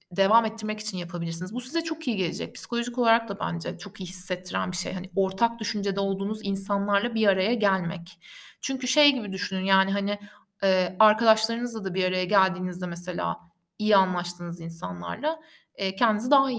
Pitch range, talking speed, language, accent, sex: 190-265 Hz, 165 wpm, Turkish, native, female